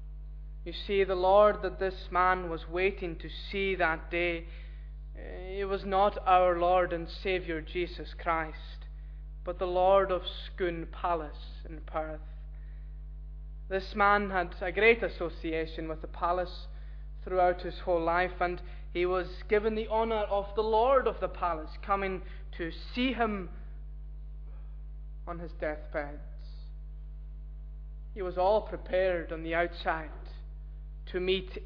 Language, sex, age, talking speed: English, male, 20-39, 135 wpm